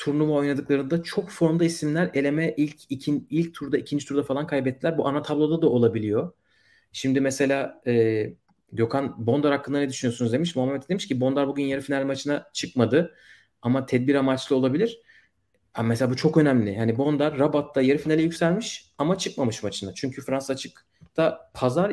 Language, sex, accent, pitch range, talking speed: Turkish, male, native, 120-150 Hz, 160 wpm